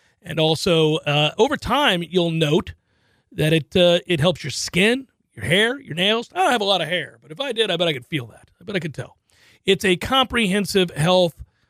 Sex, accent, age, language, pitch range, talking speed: male, American, 40-59, English, 150-195 Hz, 225 wpm